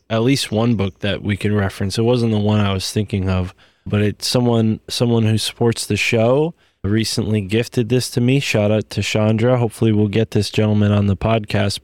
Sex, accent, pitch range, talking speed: male, American, 100-120 Hz, 210 wpm